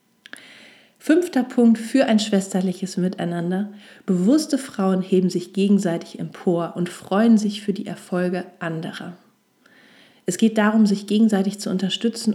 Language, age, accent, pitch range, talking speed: German, 40-59, German, 185-220 Hz, 125 wpm